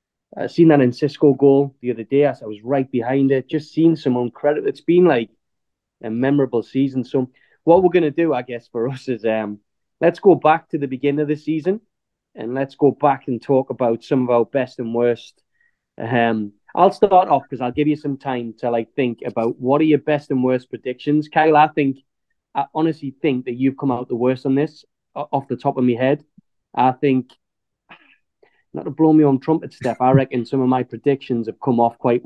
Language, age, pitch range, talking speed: English, 20-39, 125-155 Hz, 220 wpm